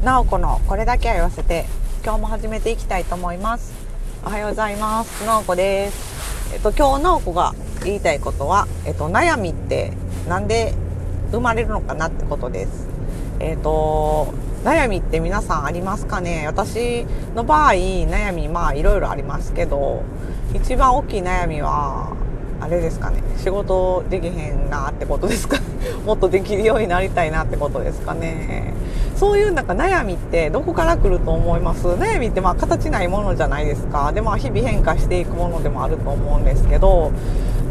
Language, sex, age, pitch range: Japanese, female, 40-59, 145-215 Hz